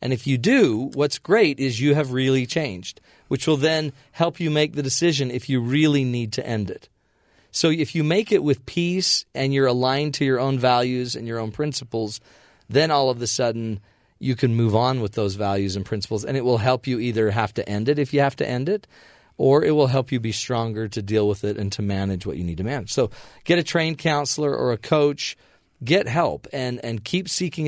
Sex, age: male, 40-59